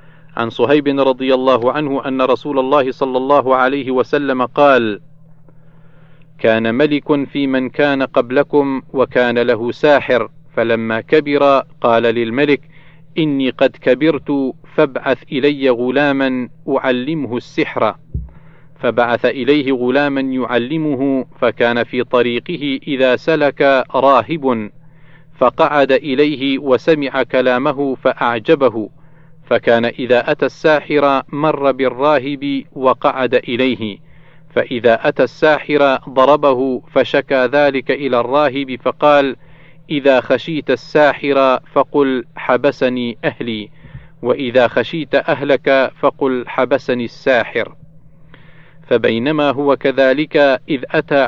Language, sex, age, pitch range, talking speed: Arabic, male, 40-59, 130-150 Hz, 95 wpm